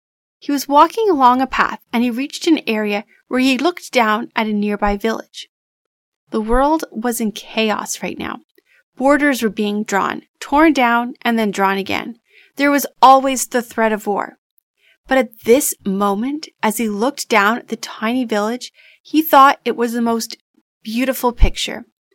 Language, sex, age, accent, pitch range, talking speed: English, female, 30-49, American, 220-280 Hz, 170 wpm